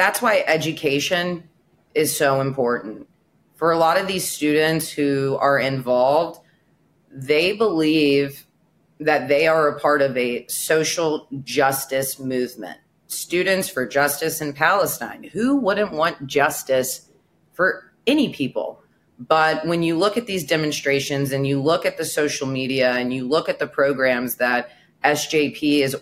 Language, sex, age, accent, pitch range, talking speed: English, female, 30-49, American, 135-165 Hz, 145 wpm